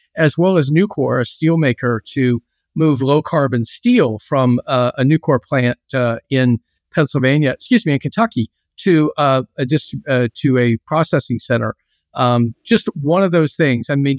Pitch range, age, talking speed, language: 130-165 Hz, 50-69, 155 wpm, English